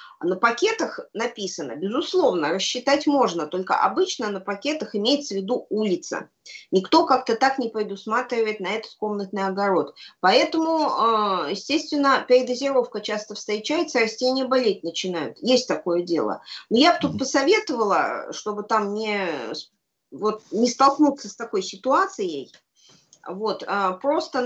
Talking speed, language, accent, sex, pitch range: 120 wpm, Russian, native, female, 210-285 Hz